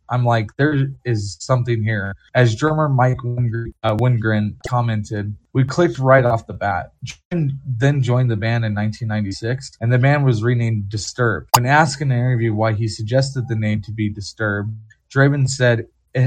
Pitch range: 110-130 Hz